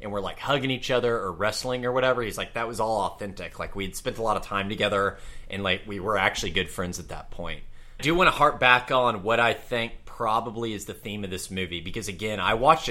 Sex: male